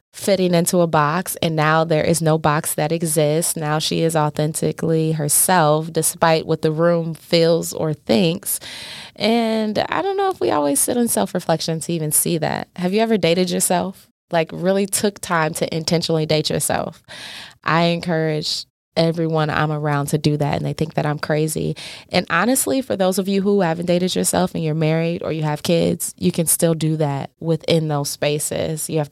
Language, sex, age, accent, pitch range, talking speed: English, female, 20-39, American, 155-170 Hz, 190 wpm